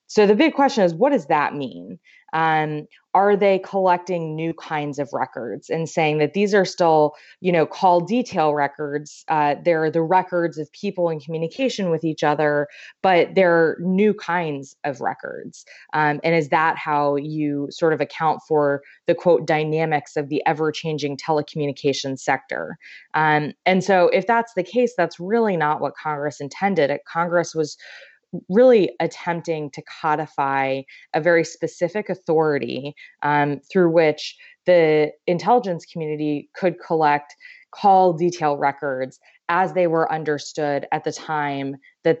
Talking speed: 150 wpm